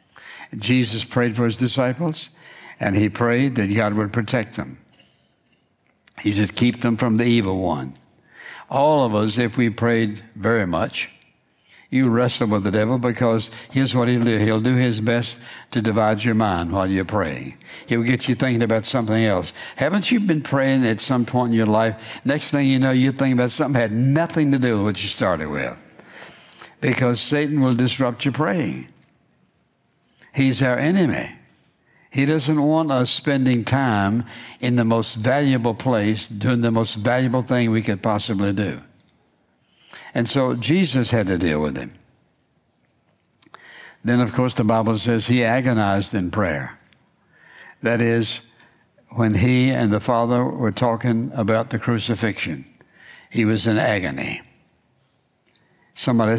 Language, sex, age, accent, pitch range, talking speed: English, male, 60-79, American, 110-130 Hz, 160 wpm